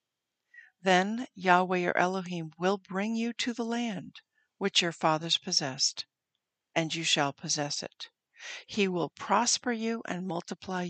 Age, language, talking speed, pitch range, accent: 60-79, English, 140 wpm, 170-215 Hz, American